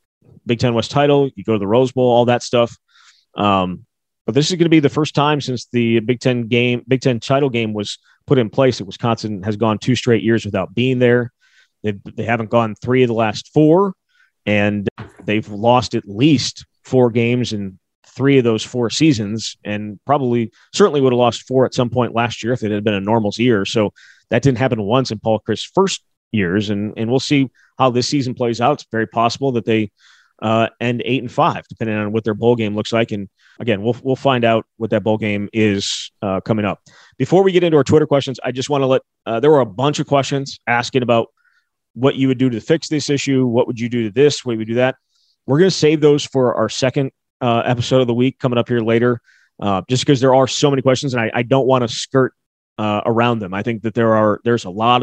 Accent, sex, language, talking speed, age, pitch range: American, male, English, 240 wpm, 30-49, 110-130 Hz